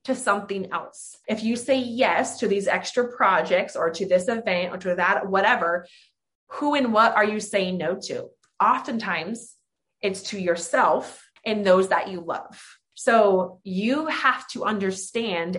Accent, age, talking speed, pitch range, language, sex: American, 20-39, 160 wpm, 195-245 Hz, English, female